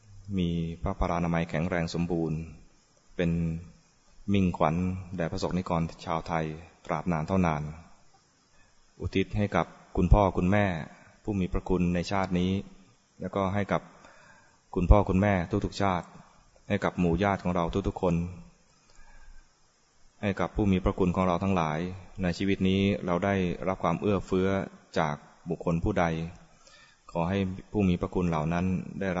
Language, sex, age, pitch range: English, male, 20-39, 85-95 Hz